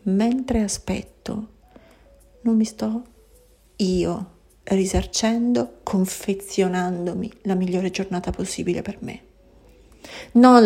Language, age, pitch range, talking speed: Italian, 40-59, 190-235 Hz, 85 wpm